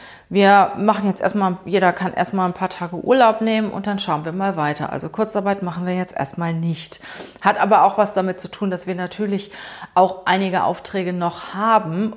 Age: 30-49